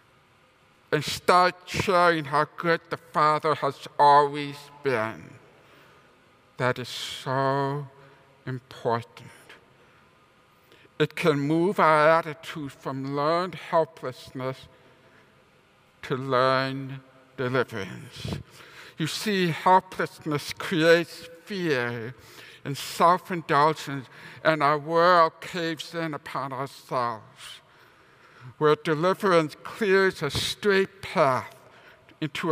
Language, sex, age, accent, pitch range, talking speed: English, male, 60-79, American, 135-170 Hz, 85 wpm